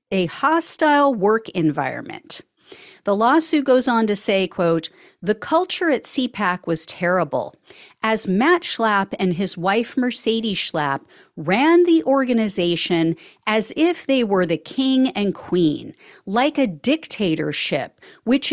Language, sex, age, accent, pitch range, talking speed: English, female, 40-59, American, 185-265 Hz, 130 wpm